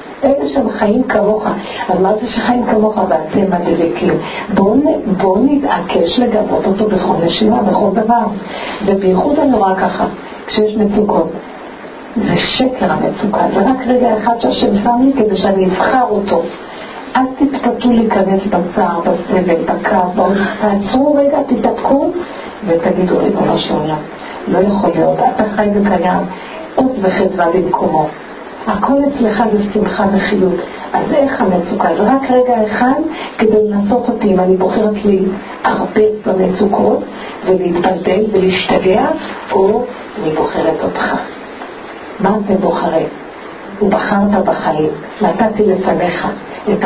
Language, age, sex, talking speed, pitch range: Hebrew, 50-69, male, 120 wpm, 185-230 Hz